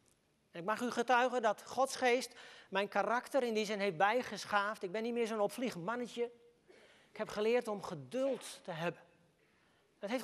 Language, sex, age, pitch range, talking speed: Dutch, male, 40-59, 185-260 Hz, 180 wpm